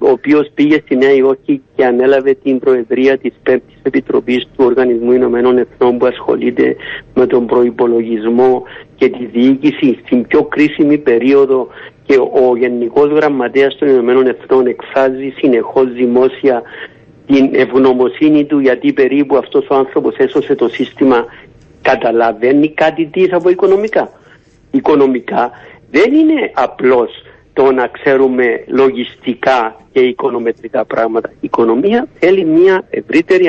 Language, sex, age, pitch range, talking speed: Greek, male, 60-79, 125-195 Hz, 125 wpm